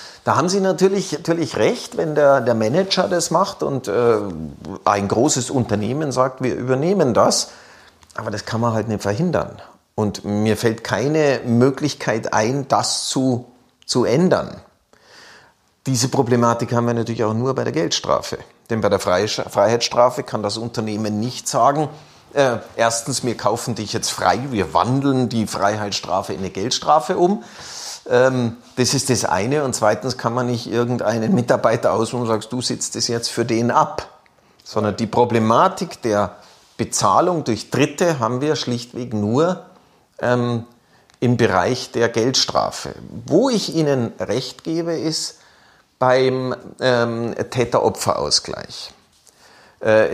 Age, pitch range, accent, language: 40-59, 115-140 Hz, German, German